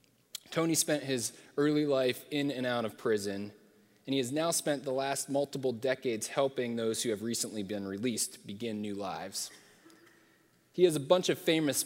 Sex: male